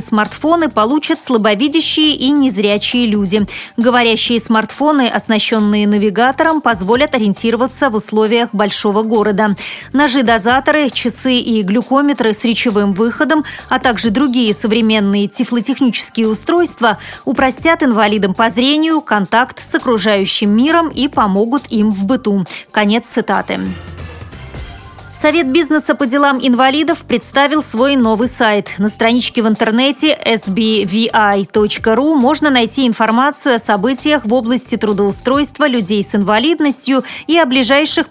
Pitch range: 215-275 Hz